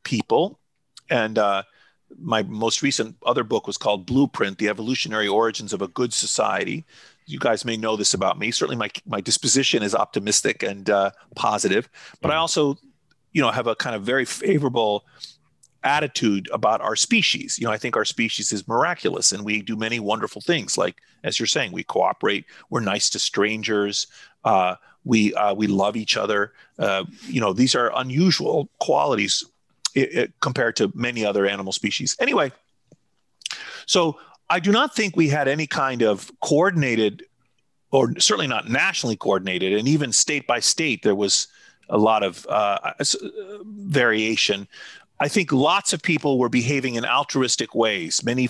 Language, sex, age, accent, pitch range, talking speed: English, male, 40-59, American, 105-145 Hz, 165 wpm